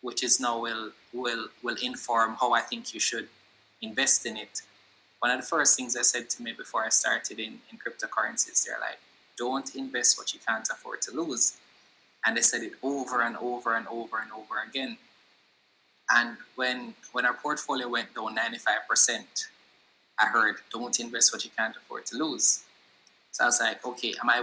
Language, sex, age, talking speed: English, male, 20-39, 190 wpm